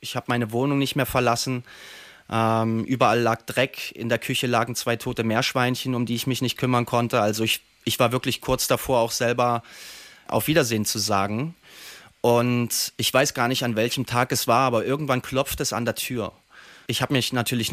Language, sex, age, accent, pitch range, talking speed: German, male, 30-49, German, 115-130 Hz, 200 wpm